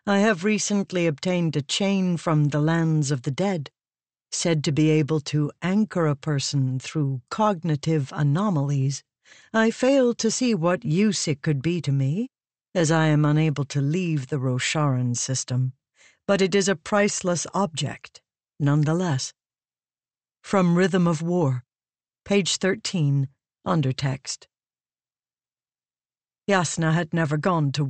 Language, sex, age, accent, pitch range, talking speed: English, female, 60-79, American, 145-190 Hz, 135 wpm